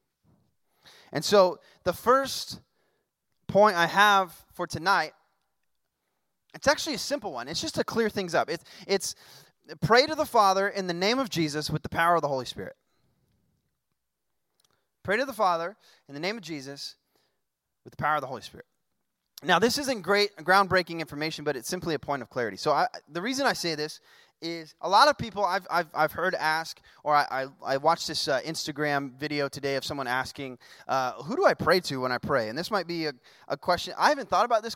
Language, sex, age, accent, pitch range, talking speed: English, male, 20-39, American, 150-195 Hz, 205 wpm